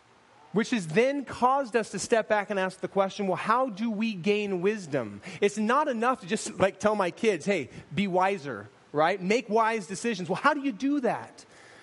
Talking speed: 205 wpm